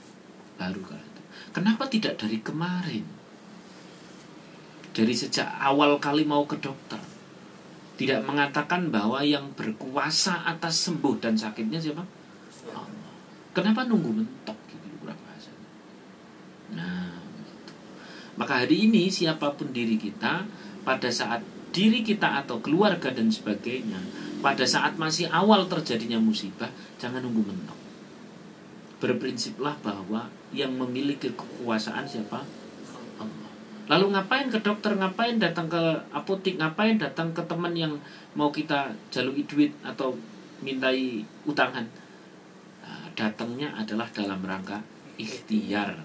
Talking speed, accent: 110 wpm, native